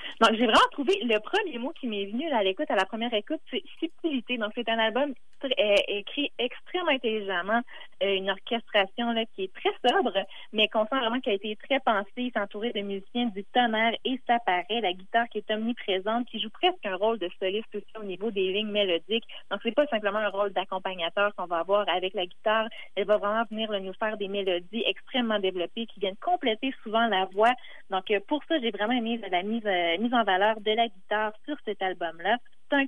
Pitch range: 200-245 Hz